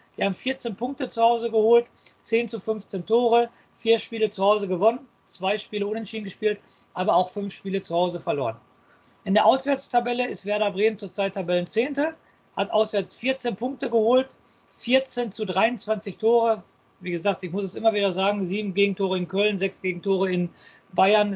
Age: 50-69